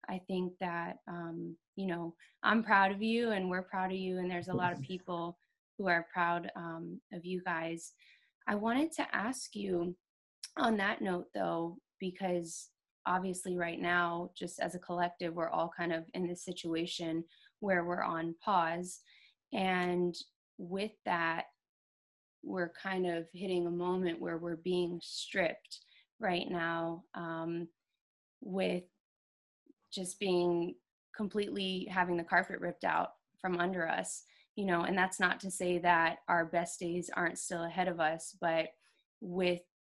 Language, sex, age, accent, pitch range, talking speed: English, female, 20-39, American, 170-185 Hz, 155 wpm